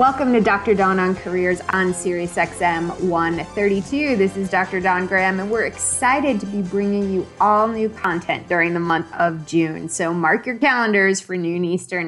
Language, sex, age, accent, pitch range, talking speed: English, female, 20-39, American, 165-205 Hz, 185 wpm